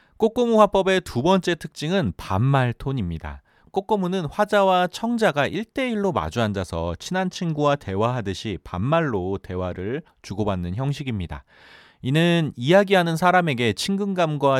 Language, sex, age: Korean, male, 30-49